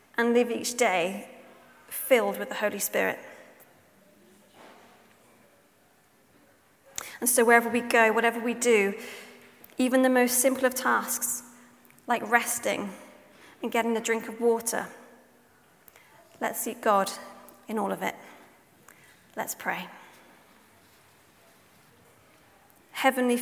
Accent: British